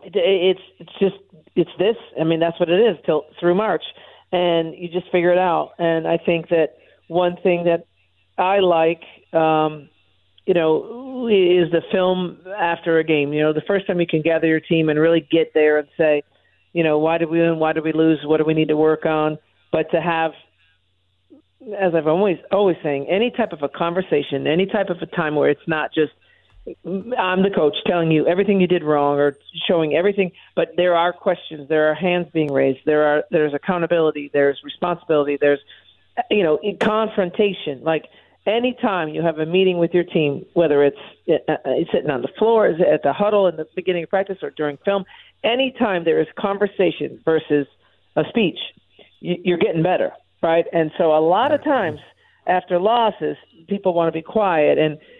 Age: 50-69